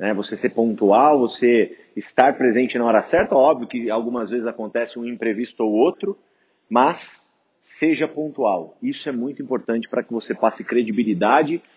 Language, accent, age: Portuguese, Brazilian, 30-49